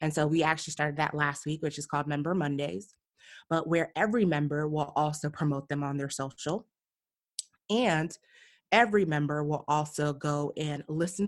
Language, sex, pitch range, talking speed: English, female, 150-185 Hz, 170 wpm